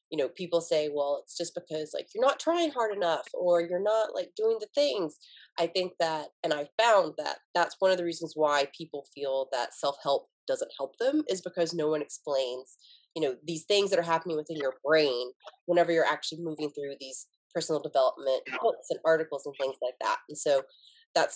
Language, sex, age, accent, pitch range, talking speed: English, female, 30-49, American, 150-220 Hz, 210 wpm